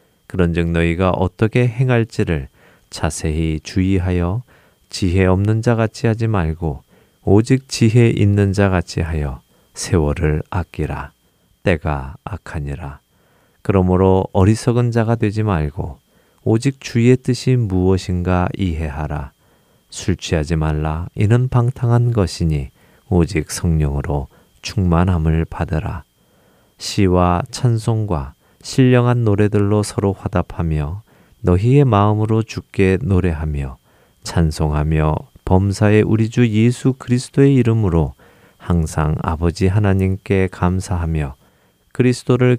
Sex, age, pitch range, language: male, 40-59, 80-110 Hz, Korean